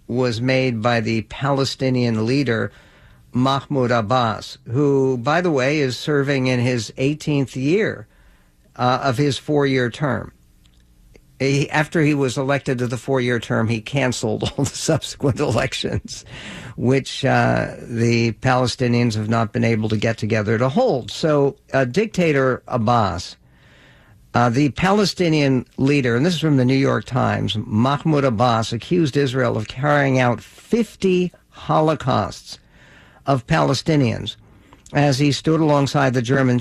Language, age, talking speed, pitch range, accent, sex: English, 60-79, 135 wpm, 115-145 Hz, American, male